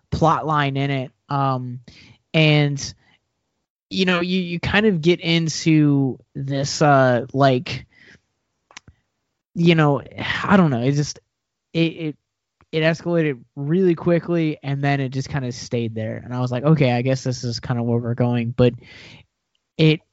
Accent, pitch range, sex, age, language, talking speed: American, 125-150 Hz, male, 20-39, English, 160 wpm